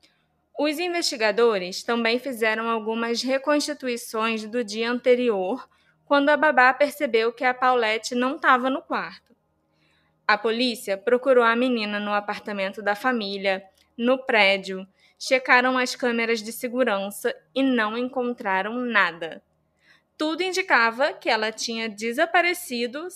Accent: Brazilian